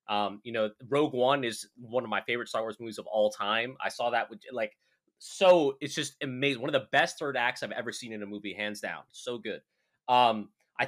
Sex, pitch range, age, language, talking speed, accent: male, 105-135 Hz, 20-39, English, 235 wpm, American